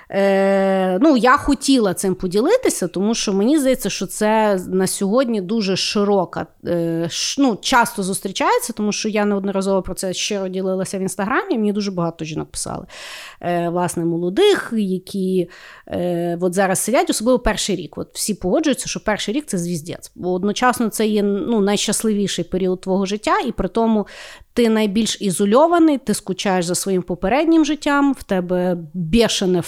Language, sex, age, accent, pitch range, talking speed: Ukrainian, female, 30-49, native, 190-255 Hz, 160 wpm